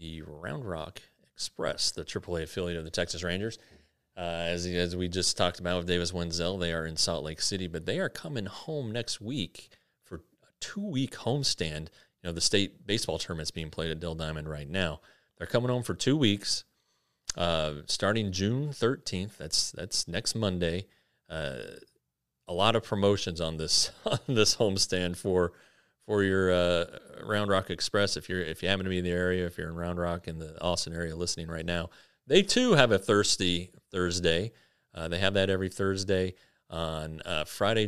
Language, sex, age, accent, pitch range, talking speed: English, male, 30-49, American, 85-100 Hz, 190 wpm